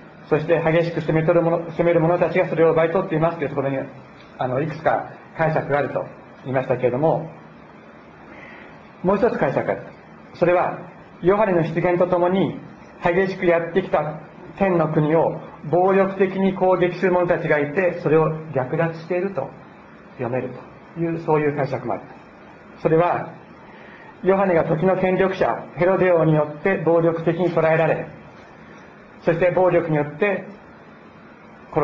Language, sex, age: Japanese, male, 40-59